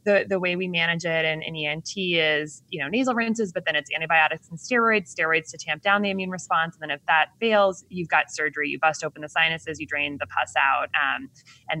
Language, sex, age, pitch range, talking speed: English, female, 20-39, 150-185 Hz, 240 wpm